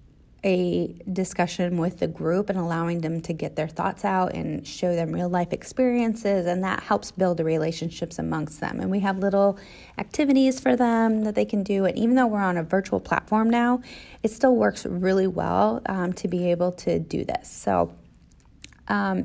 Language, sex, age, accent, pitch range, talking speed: English, female, 30-49, American, 175-220 Hz, 190 wpm